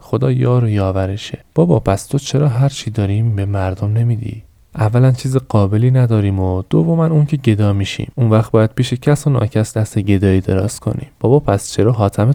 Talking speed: 190 wpm